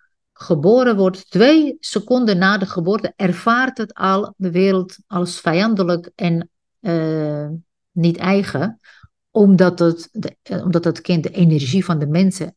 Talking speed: 140 wpm